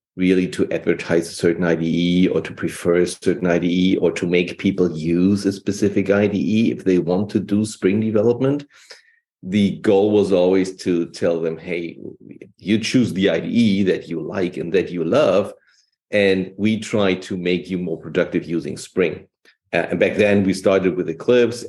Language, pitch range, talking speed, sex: English, 90-110 Hz, 175 wpm, male